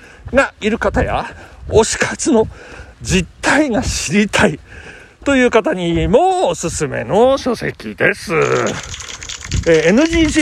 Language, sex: Japanese, male